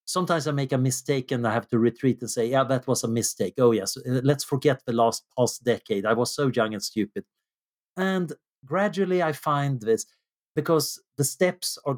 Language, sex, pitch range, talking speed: English, male, 120-160 Hz, 200 wpm